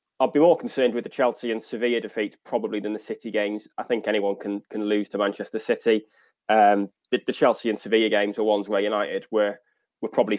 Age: 20-39